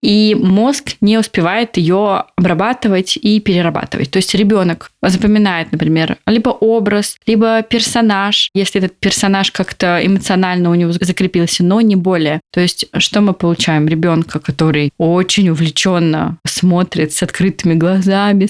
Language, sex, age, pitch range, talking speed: Russian, female, 20-39, 170-205 Hz, 135 wpm